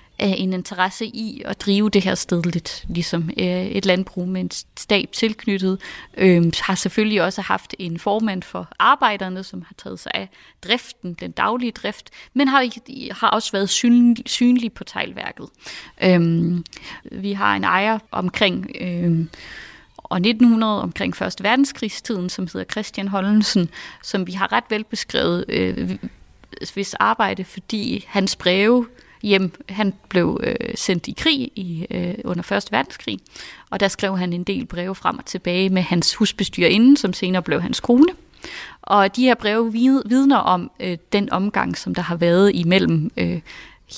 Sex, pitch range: female, 180-225 Hz